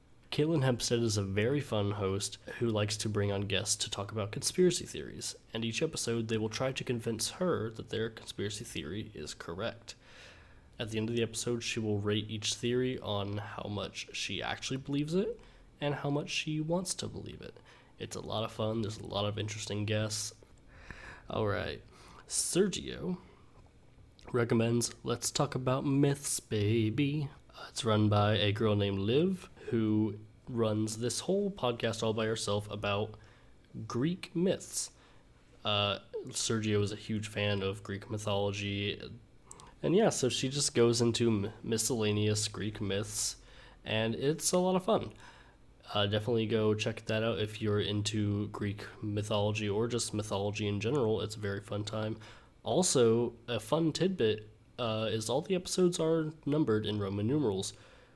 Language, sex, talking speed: English, male, 160 wpm